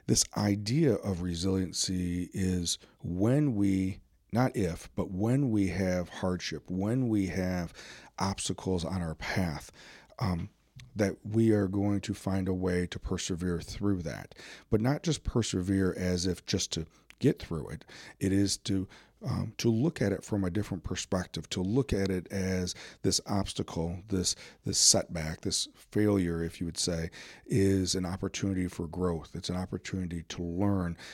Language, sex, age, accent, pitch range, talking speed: English, male, 40-59, American, 90-105 Hz, 160 wpm